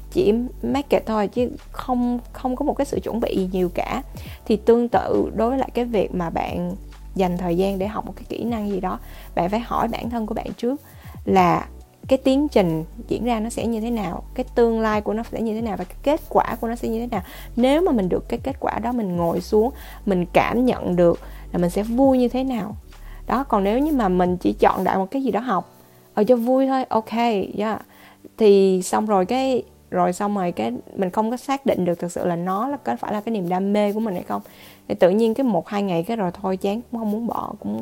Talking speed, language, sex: 255 wpm, Vietnamese, female